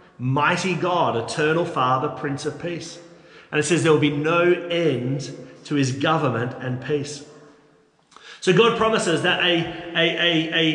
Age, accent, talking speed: 40-59, Australian, 150 wpm